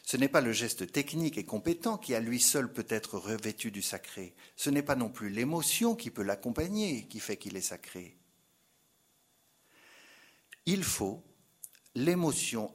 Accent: French